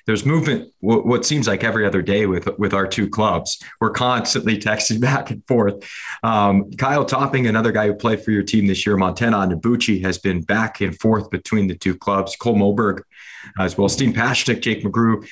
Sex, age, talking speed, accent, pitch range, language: male, 30-49, 200 wpm, American, 100-120 Hz, English